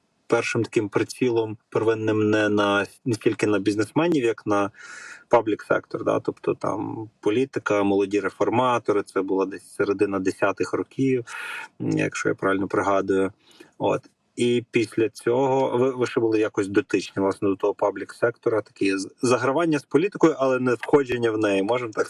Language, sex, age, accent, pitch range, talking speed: Ukrainian, male, 20-39, native, 100-125 Hz, 150 wpm